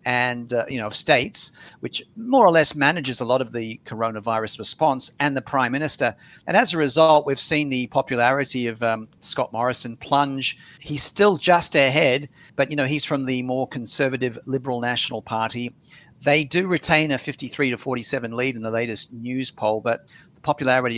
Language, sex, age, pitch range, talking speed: English, male, 50-69, 120-150 Hz, 185 wpm